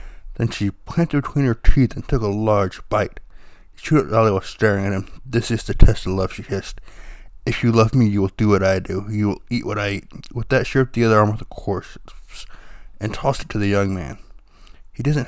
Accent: American